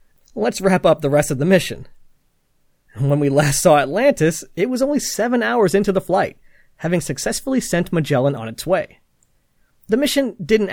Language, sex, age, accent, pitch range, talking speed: English, male, 30-49, American, 135-195 Hz, 175 wpm